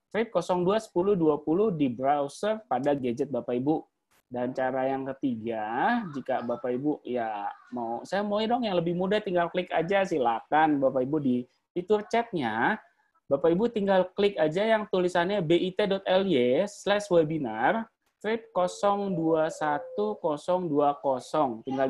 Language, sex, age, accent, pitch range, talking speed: English, male, 20-39, Indonesian, 140-190 Hz, 110 wpm